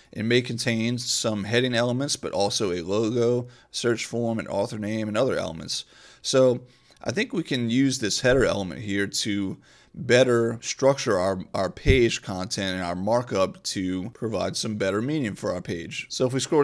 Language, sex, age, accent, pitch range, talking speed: English, male, 30-49, American, 100-120 Hz, 180 wpm